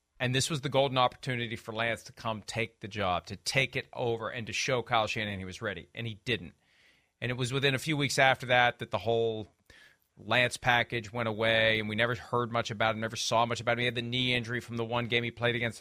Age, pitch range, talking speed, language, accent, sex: 40-59, 115-140 Hz, 260 wpm, English, American, male